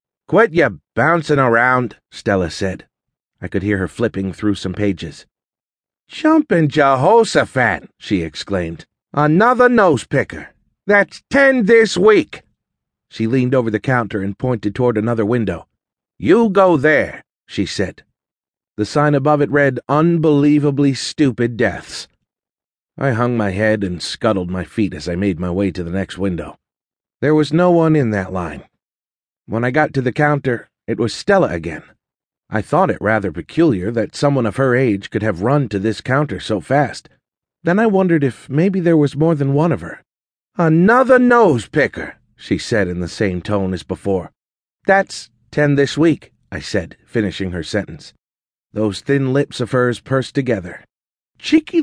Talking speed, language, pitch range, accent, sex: 160 wpm, English, 100-150 Hz, American, male